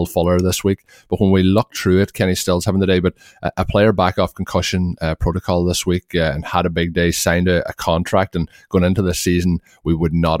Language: English